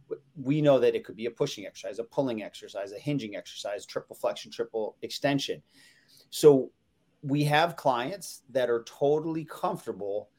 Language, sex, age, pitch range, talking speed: English, male, 30-49, 115-145 Hz, 155 wpm